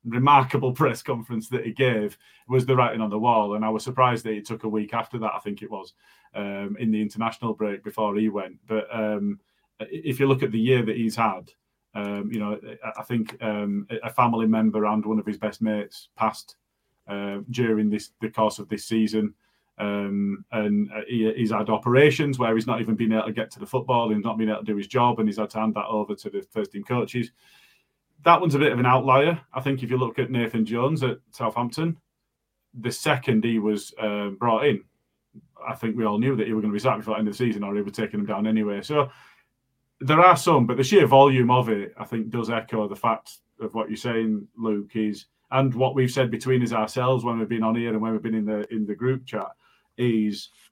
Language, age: English, 30-49